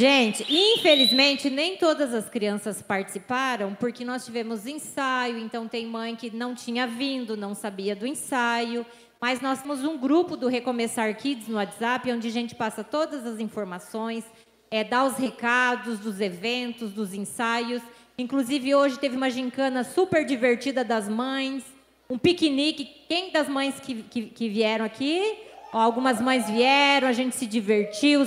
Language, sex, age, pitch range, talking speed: Portuguese, female, 20-39, 235-285 Hz, 150 wpm